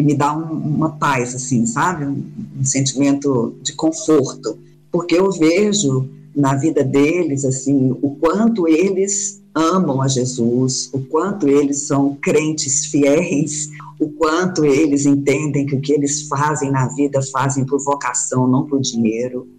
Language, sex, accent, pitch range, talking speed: Portuguese, female, Brazilian, 125-150 Hz, 140 wpm